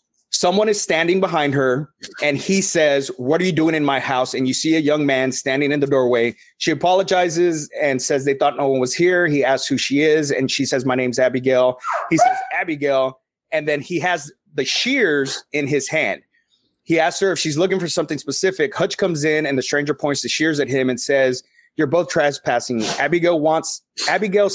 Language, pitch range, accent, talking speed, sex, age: English, 135-175 Hz, American, 210 wpm, male, 30-49